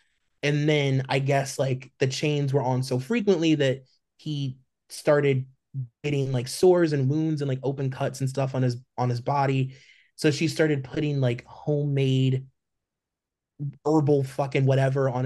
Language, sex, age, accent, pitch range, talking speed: English, male, 20-39, American, 125-145 Hz, 155 wpm